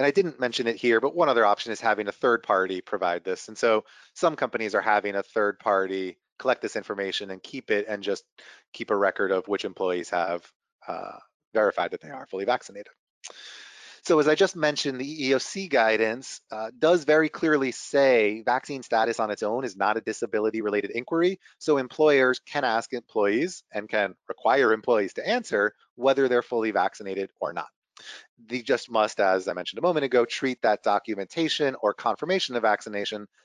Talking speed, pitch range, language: 190 wpm, 105-130 Hz, English